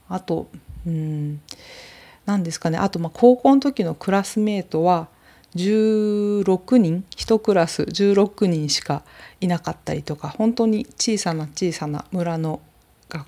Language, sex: Japanese, female